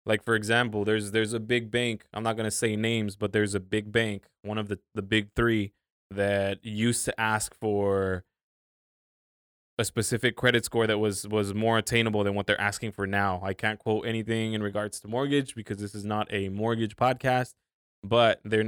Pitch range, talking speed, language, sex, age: 100-115 Hz, 200 wpm, English, male, 20-39